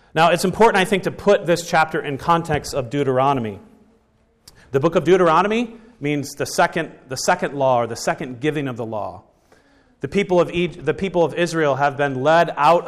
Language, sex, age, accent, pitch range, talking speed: English, male, 40-59, American, 130-175 Hz, 195 wpm